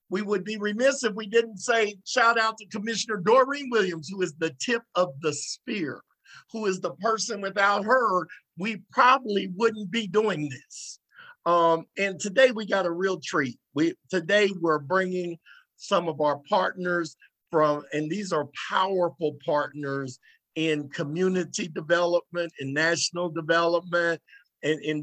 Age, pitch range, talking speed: 50-69, 145-185 Hz, 150 wpm